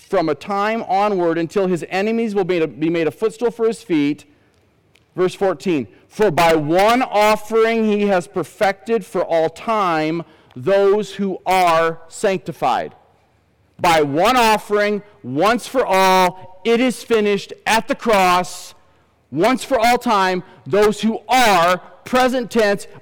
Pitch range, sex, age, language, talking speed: 185-230 Hz, male, 40-59, English, 140 wpm